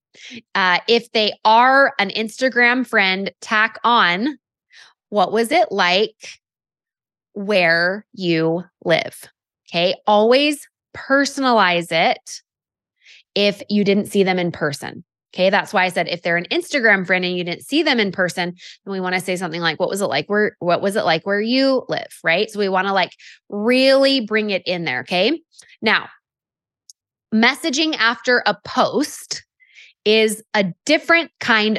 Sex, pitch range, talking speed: female, 190-260 Hz, 160 wpm